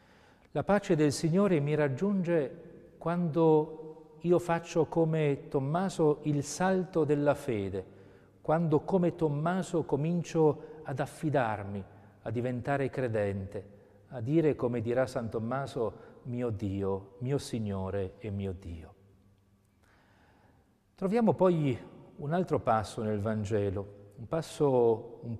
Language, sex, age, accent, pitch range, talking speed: Italian, male, 40-59, native, 110-155 Hz, 110 wpm